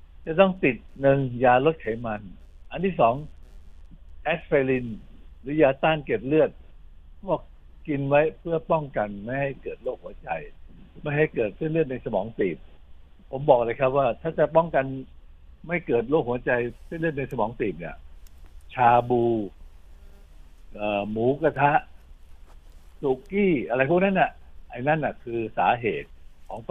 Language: Thai